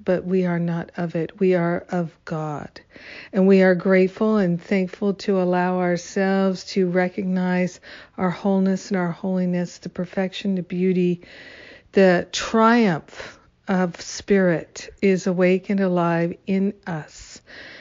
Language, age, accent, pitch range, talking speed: English, 50-69, American, 180-200 Hz, 130 wpm